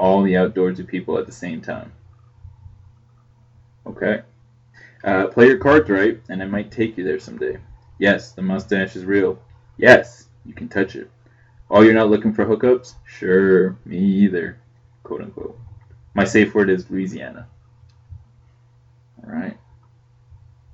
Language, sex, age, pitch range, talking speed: English, male, 20-39, 100-120 Hz, 140 wpm